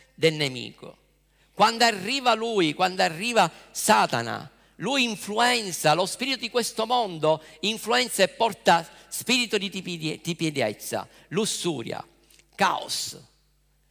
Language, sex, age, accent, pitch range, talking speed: Italian, male, 50-69, native, 155-220 Hz, 90 wpm